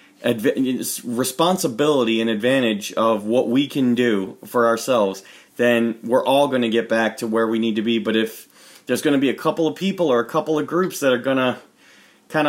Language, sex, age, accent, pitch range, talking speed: English, male, 30-49, American, 120-145 Hz, 210 wpm